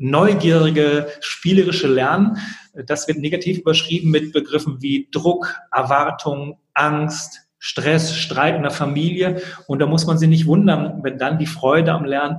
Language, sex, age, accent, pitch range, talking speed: German, male, 30-49, German, 140-170 Hz, 150 wpm